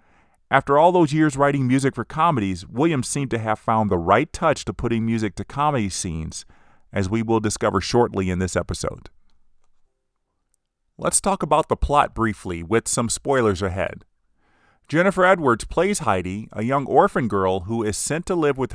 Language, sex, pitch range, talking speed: English, male, 105-145 Hz, 175 wpm